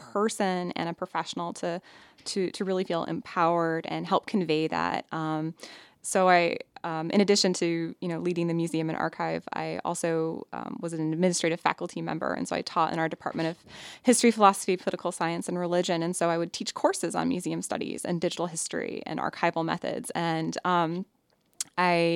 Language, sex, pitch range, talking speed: English, female, 160-190 Hz, 185 wpm